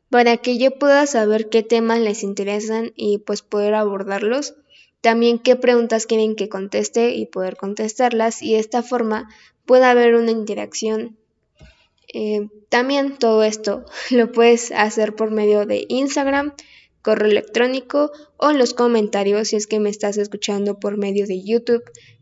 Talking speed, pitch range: 155 wpm, 210-245 Hz